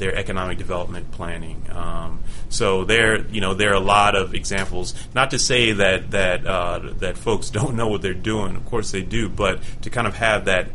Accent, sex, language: American, male, English